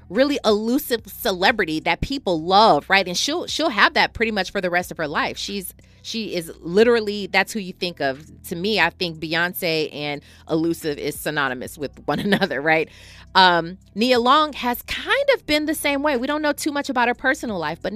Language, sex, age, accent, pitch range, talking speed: English, female, 30-49, American, 160-235 Hz, 205 wpm